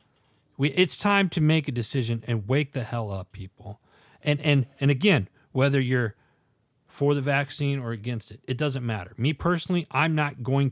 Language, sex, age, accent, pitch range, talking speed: English, male, 30-49, American, 130-175 Hz, 180 wpm